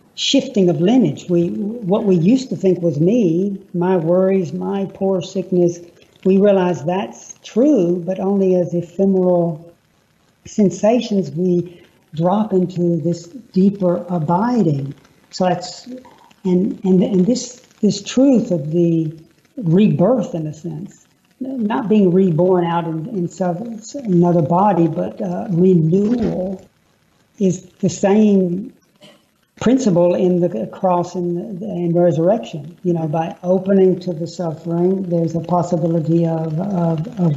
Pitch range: 170-195 Hz